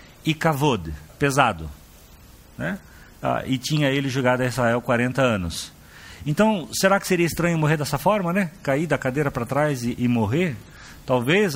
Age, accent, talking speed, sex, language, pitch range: 50-69, Brazilian, 160 wpm, male, Portuguese, 125-165 Hz